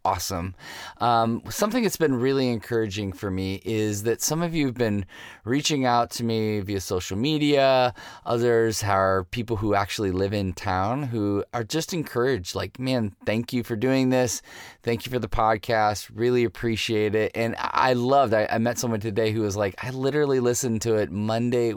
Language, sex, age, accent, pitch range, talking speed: English, male, 20-39, American, 100-130 Hz, 185 wpm